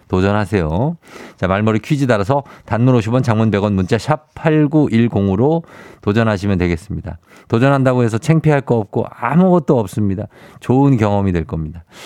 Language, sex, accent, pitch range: Korean, male, native, 105-150 Hz